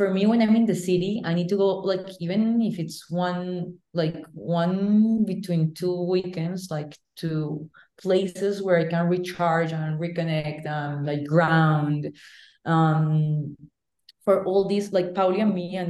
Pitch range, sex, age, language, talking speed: 160-180 Hz, female, 30-49, English, 160 wpm